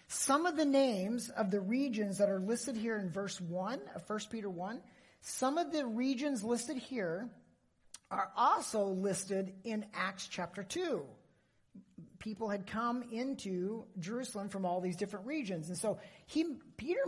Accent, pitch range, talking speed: American, 190-250 Hz, 160 wpm